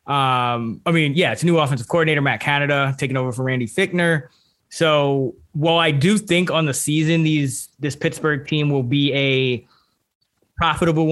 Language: English